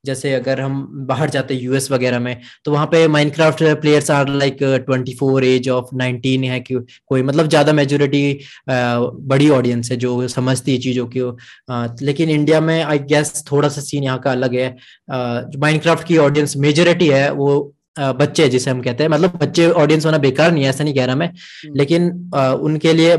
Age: 20-39